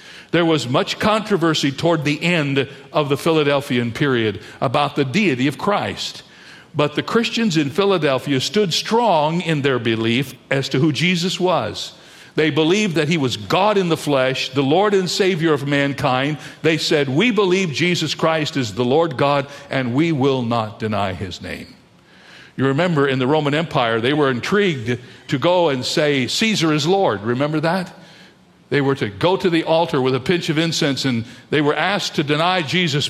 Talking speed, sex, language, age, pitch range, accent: 180 wpm, male, English, 60-79, 130-170 Hz, American